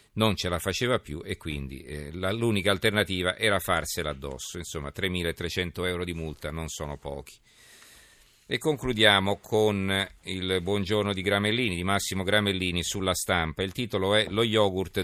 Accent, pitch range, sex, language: native, 85-105 Hz, male, Italian